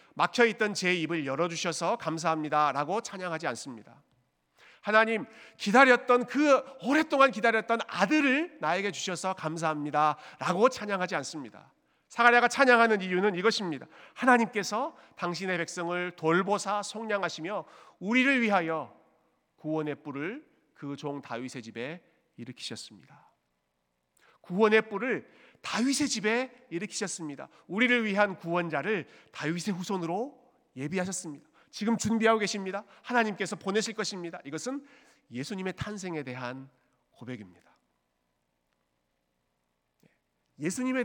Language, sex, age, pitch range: Korean, male, 40-59, 150-230 Hz